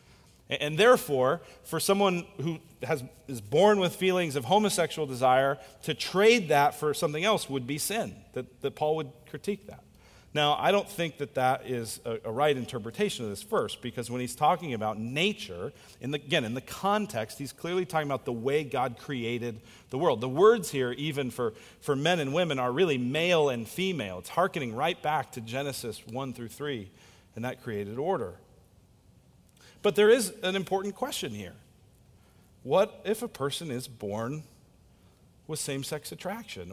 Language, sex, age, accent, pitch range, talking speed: English, male, 40-59, American, 125-175 Hz, 175 wpm